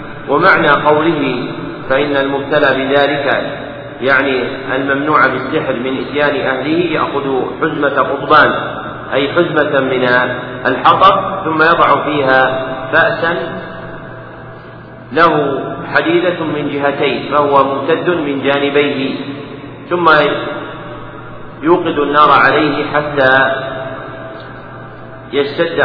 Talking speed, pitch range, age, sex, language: 85 wpm, 135-155 Hz, 50-69, male, Arabic